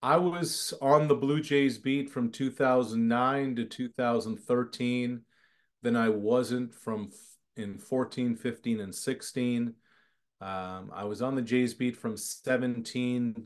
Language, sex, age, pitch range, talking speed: English, male, 30-49, 115-140 Hz, 130 wpm